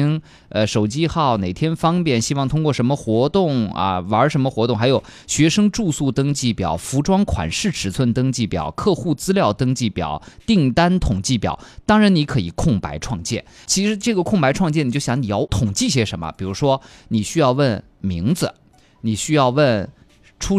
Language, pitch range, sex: Chinese, 105-160 Hz, male